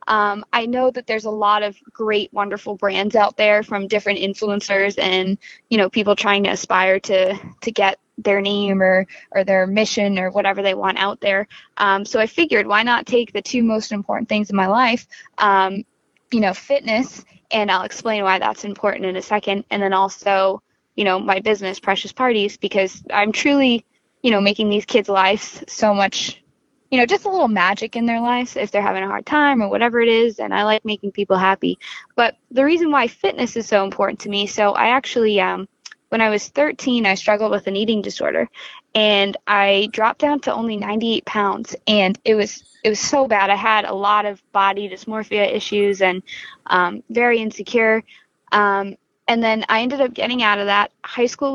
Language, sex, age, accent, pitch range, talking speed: English, female, 10-29, American, 200-235 Hz, 205 wpm